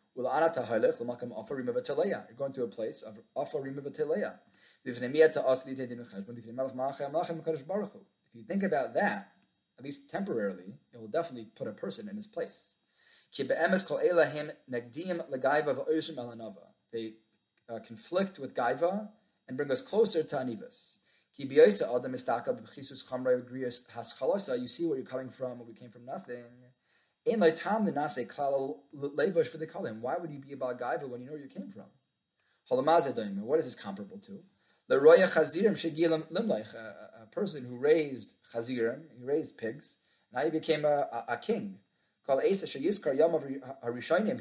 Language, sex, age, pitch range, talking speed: English, male, 30-49, 125-180 Hz, 105 wpm